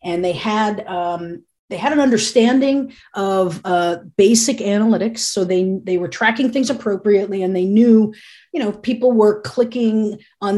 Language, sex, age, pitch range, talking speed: English, female, 40-59, 175-220 Hz, 160 wpm